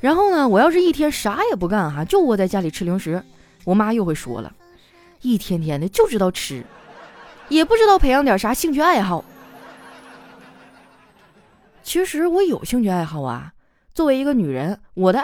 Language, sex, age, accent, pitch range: Chinese, female, 20-39, native, 175-260 Hz